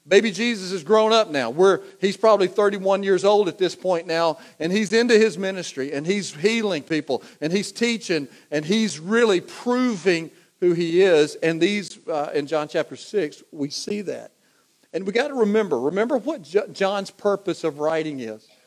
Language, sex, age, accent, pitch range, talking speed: English, male, 40-59, American, 160-210 Hz, 185 wpm